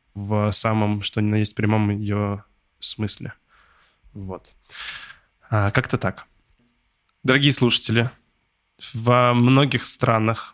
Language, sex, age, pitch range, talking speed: Russian, male, 20-39, 105-120 Hz, 100 wpm